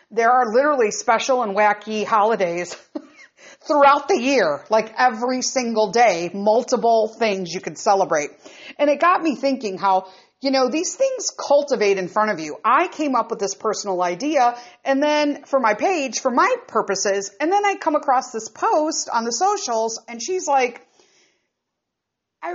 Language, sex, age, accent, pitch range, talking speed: English, female, 50-69, American, 220-305 Hz, 170 wpm